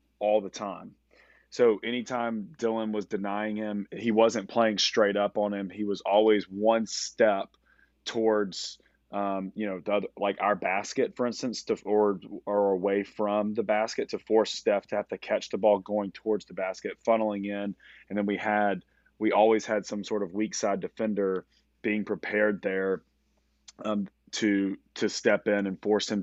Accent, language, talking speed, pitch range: American, English, 180 wpm, 95-105 Hz